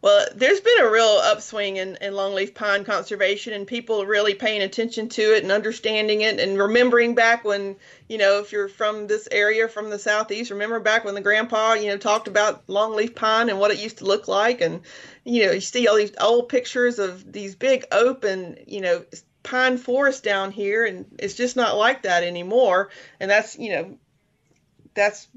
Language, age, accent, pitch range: English, 30-49, American, 195-240 Hz